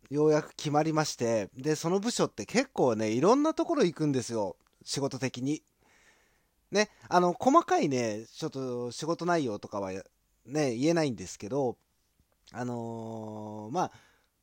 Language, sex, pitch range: Japanese, male, 115-175 Hz